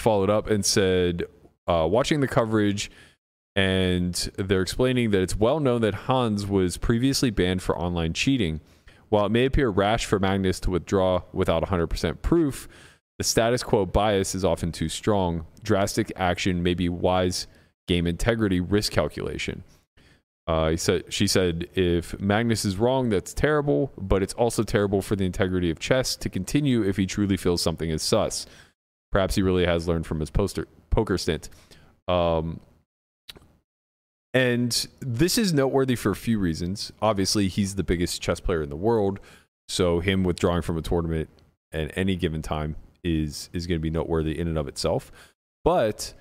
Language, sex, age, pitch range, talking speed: English, male, 20-39, 85-110 Hz, 170 wpm